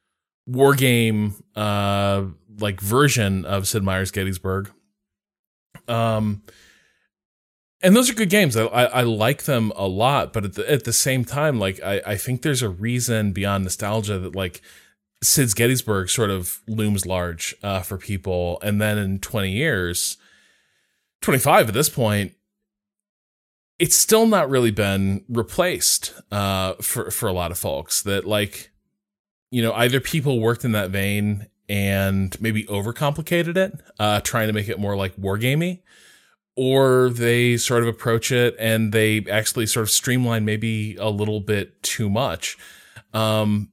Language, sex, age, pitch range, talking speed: English, male, 20-39, 100-125 Hz, 155 wpm